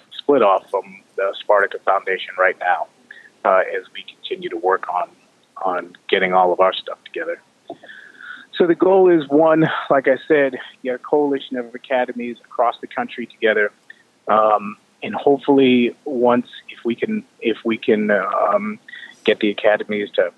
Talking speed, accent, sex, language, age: 165 wpm, American, male, English, 30-49